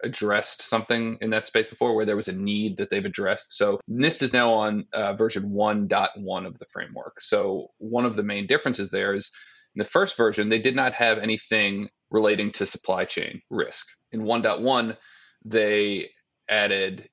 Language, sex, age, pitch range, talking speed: English, male, 30-49, 105-120 Hz, 180 wpm